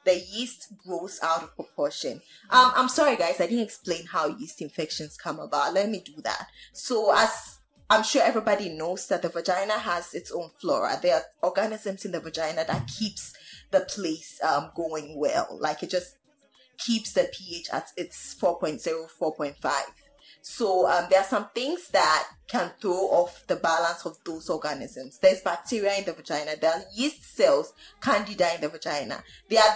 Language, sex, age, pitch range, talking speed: English, female, 10-29, 165-245 Hz, 175 wpm